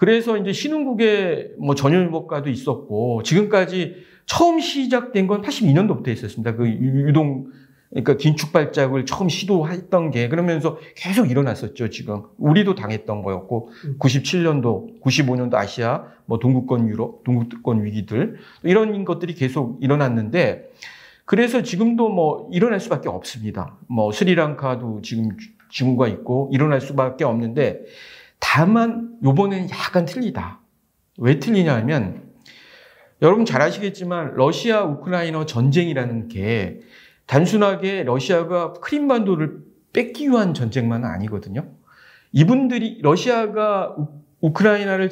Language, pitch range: Korean, 130-200 Hz